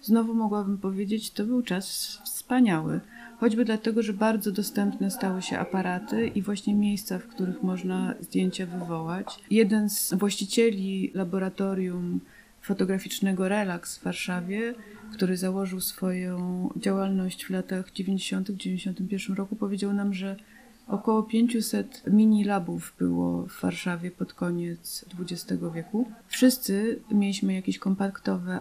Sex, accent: female, native